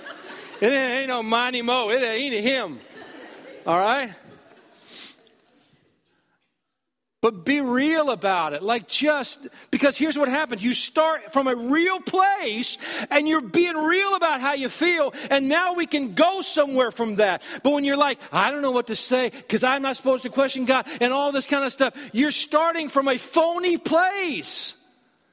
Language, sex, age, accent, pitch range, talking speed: English, male, 50-69, American, 200-290 Hz, 170 wpm